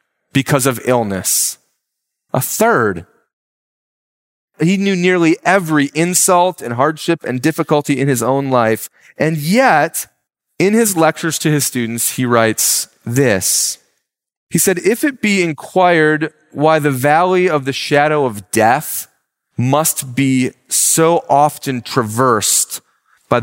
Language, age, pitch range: English, 30-49, 125-175 Hz